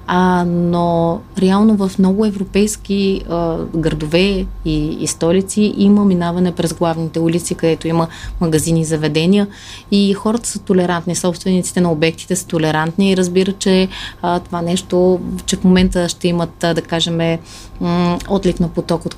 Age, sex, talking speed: 30-49, female, 140 wpm